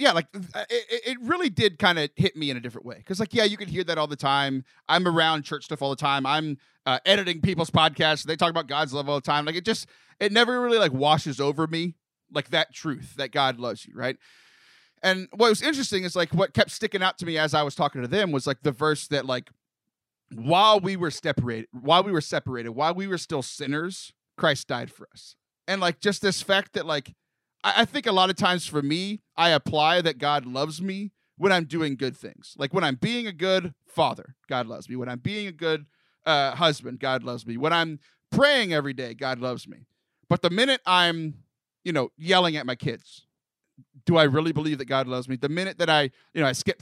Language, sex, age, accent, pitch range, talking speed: English, male, 30-49, American, 145-195 Hz, 235 wpm